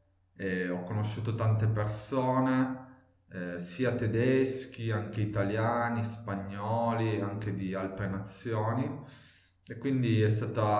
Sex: male